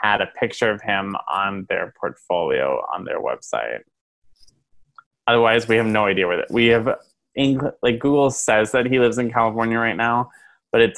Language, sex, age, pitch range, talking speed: English, male, 20-39, 105-125 Hz, 180 wpm